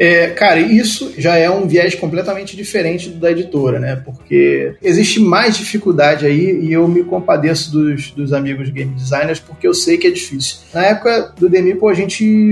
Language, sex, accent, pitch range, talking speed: Portuguese, male, Brazilian, 170-215 Hz, 185 wpm